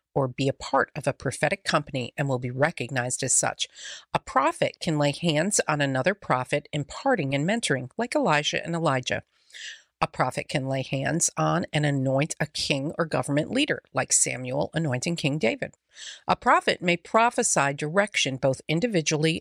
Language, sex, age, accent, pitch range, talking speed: English, female, 40-59, American, 140-170 Hz, 165 wpm